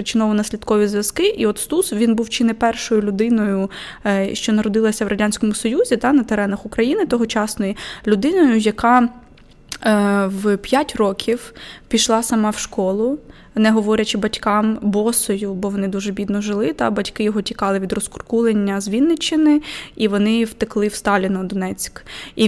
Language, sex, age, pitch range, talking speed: Ukrainian, female, 20-39, 200-230 Hz, 145 wpm